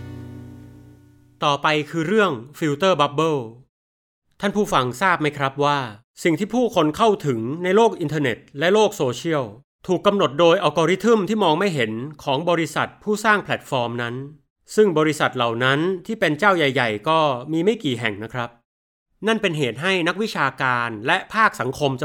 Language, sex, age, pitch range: Thai, male, 30-49, 125-175 Hz